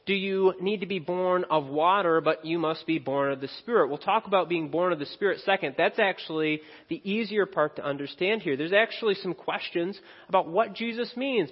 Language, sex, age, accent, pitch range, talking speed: English, male, 30-49, American, 145-190 Hz, 215 wpm